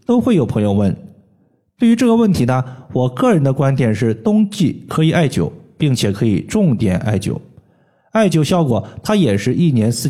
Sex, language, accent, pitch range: male, Chinese, native, 125-165 Hz